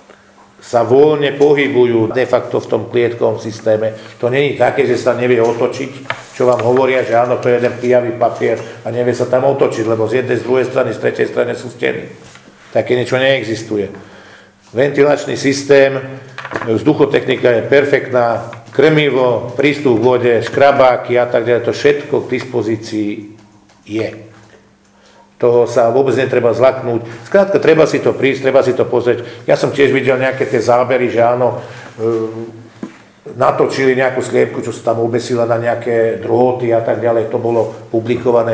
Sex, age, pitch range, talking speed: male, 50-69, 115-130 Hz, 160 wpm